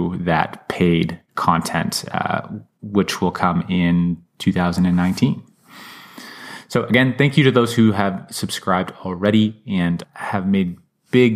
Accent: American